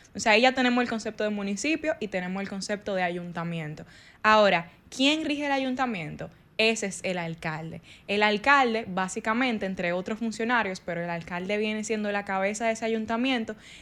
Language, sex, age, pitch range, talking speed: Spanish, female, 10-29, 195-235 Hz, 175 wpm